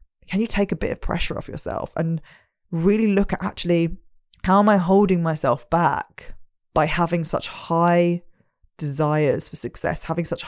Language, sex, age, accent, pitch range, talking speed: English, female, 20-39, British, 155-195 Hz, 165 wpm